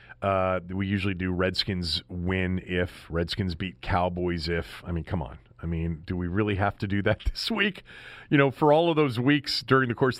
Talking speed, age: 210 wpm, 40-59